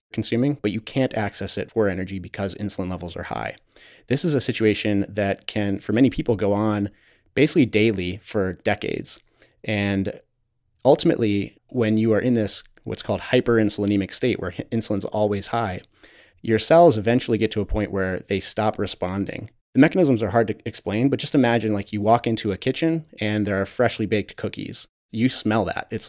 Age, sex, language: 30-49, male, English